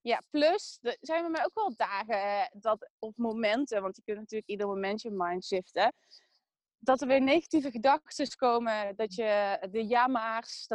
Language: Dutch